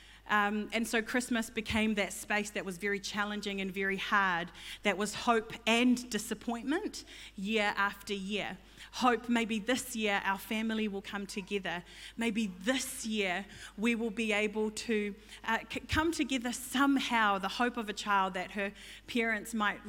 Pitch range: 200-235 Hz